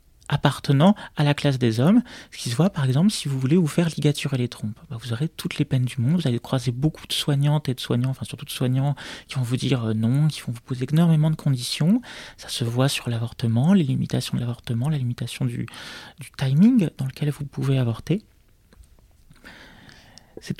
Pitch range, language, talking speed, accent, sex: 130-175 Hz, French, 210 wpm, French, male